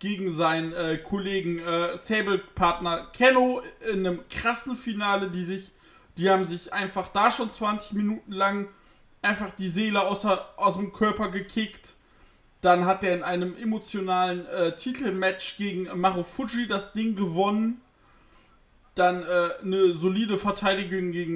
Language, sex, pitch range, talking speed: German, male, 185-225 Hz, 145 wpm